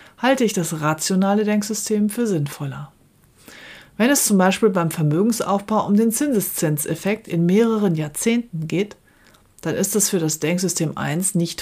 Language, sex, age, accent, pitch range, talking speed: German, female, 40-59, German, 160-215 Hz, 145 wpm